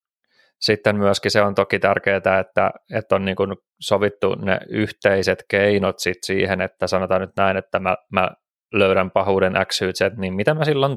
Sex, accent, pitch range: male, native, 95-105 Hz